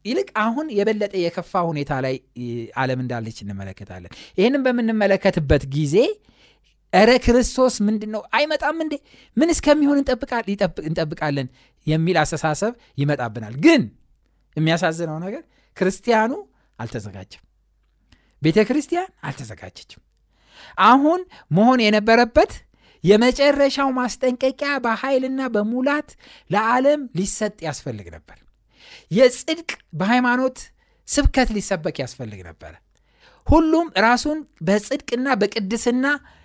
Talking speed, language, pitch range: 75 wpm, Amharic, 160-260 Hz